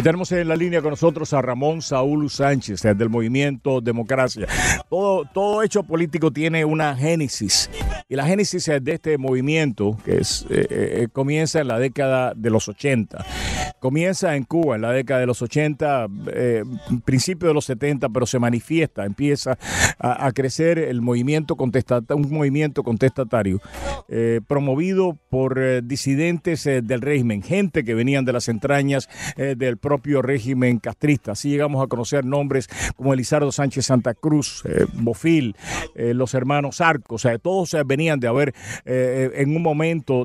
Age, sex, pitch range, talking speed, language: 50-69, male, 125-150 Hz, 160 wpm, Spanish